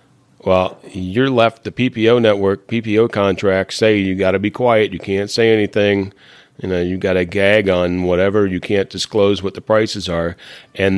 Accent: American